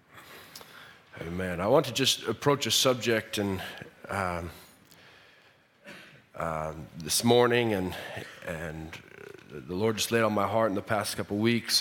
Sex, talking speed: male, 140 wpm